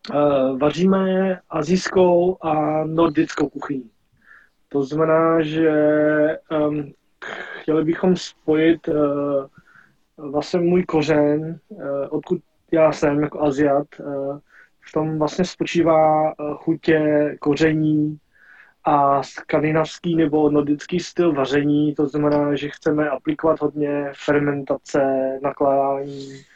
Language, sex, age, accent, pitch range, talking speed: Czech, male, 20-39, native, 145-165 Hz, 105 wpm